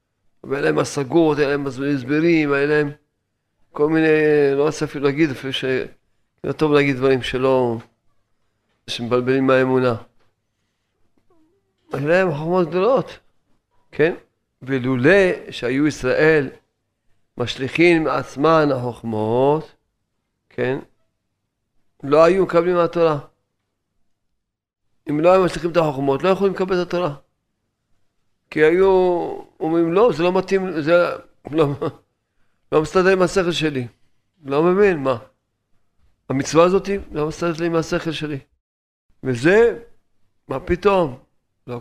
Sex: male